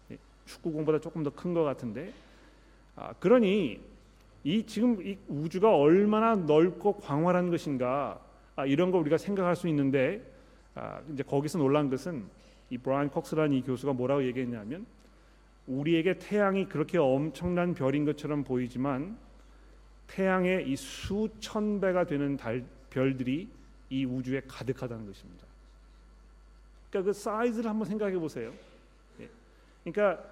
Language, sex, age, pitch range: Korean, male, 40-59, 135-185 Hz